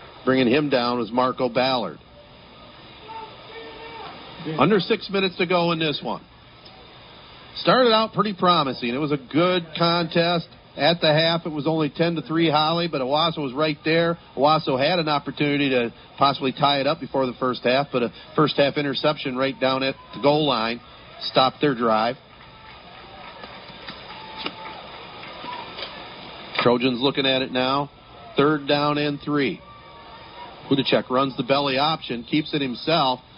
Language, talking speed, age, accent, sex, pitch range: English, 140 wpm, 40-59, American, male, 115-150 Hz